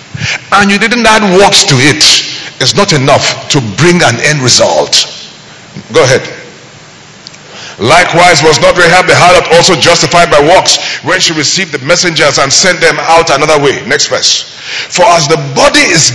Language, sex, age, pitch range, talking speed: English, male, 50-69, 130-175 Hz, 165 wpm